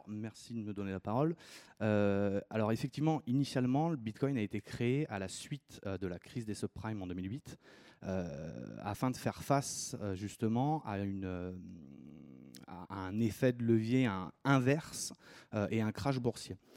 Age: 30-49